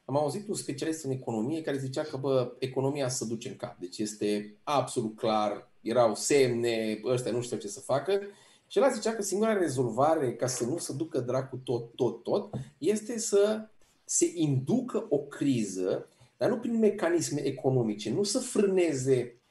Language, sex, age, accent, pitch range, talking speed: Romanian, male, 30-49, native, 135-215 Hz, 170 wpm